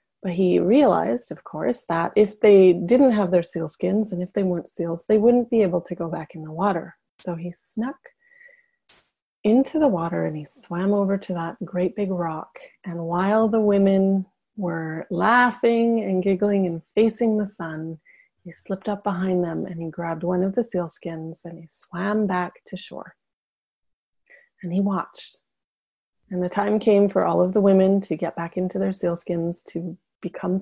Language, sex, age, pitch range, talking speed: English, female, 30-49, 175-210 Hz, 185 wpm